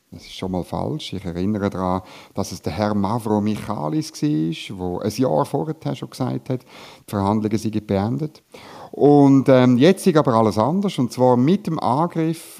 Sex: male